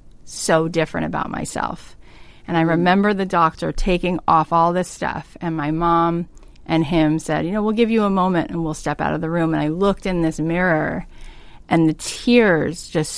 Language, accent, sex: English, American, female